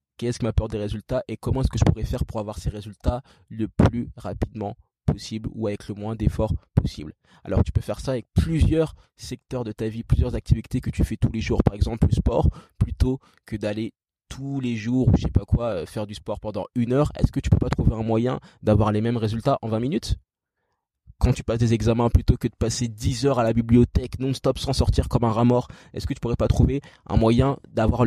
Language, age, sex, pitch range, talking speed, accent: French, 20-39, male, 105-125 Hz, 240 wpm, French